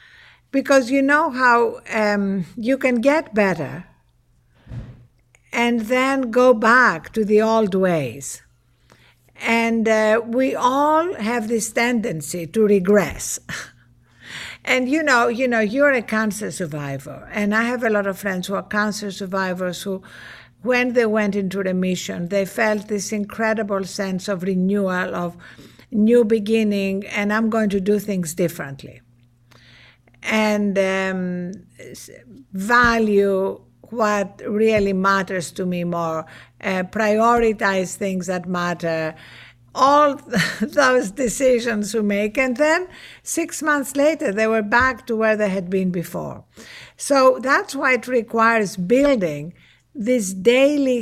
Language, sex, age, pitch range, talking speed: English, female, 60-79, 185-240 Hz, 130 wpm